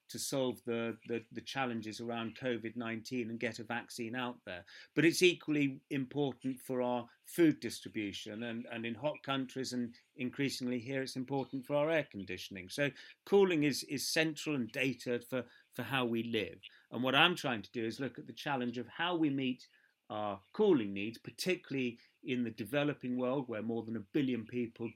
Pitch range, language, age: 115-135 Hz, English, 40-59